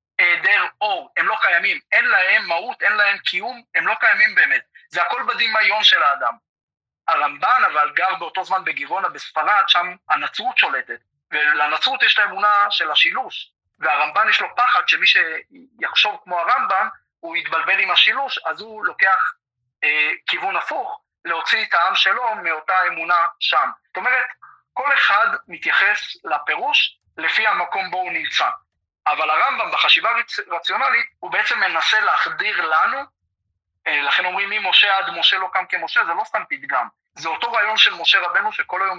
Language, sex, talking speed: Hebrew, male, 155 wpm